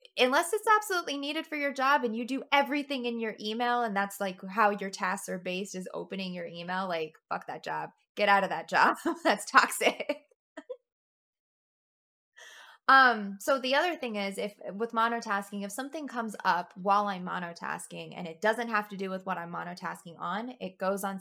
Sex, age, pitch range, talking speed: female, 20-39, 175-235 Hz, 190 wpm